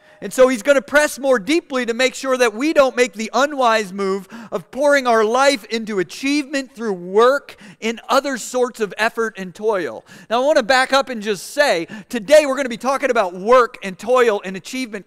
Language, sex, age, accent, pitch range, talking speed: English, male, 40-59, American, 220-275 Hz, 215 wpm